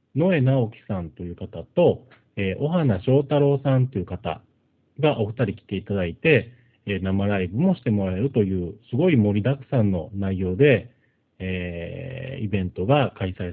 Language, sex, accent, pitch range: Japanese, male, native, 95-130 Hz